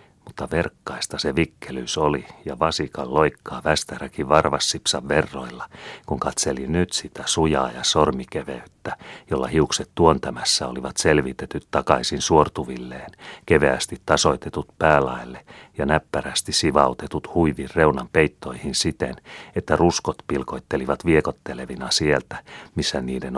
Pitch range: 65-75 Hz